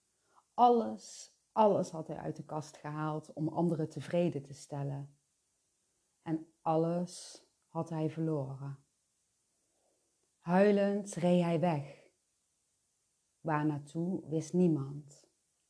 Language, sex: Dutch, female